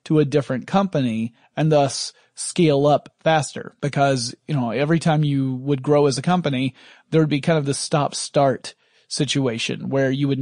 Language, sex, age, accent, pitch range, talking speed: English, male, 30-49, American, 140-165 Hz, 185 wpm